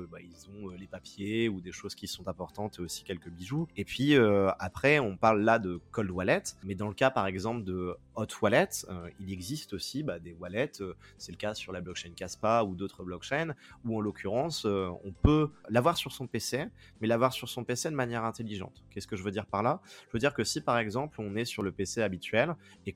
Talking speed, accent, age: 235 wpm, French, 30-49